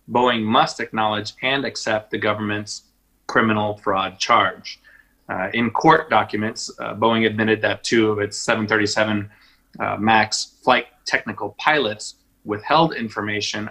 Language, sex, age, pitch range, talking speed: English, male, 30-49, 105-115 Hz, 125 wpm